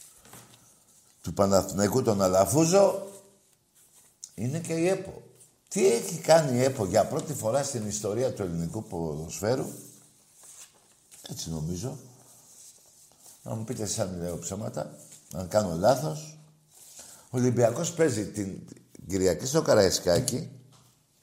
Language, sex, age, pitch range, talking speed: Greek, male, 60-79, 100-150 Hz, 115 wpm